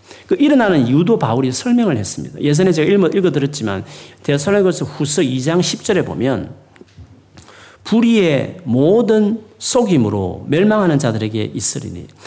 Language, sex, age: Korean, male, 40-59